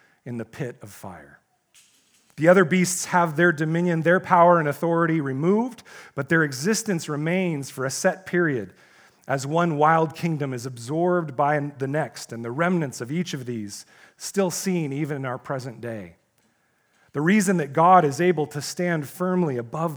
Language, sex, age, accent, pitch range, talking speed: English, male, 40-59, American, 145-190 Hz, 170 wpm